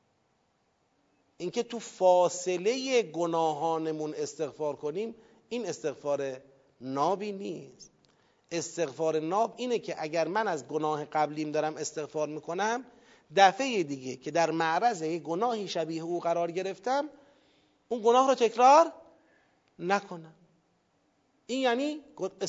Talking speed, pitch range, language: 105 wpm, 180-280 Hz, Persian